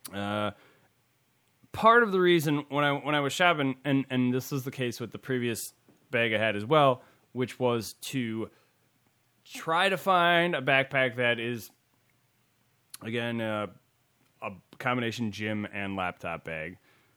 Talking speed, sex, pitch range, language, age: 150 wpm, male, 110-140 Hz, English, 20-39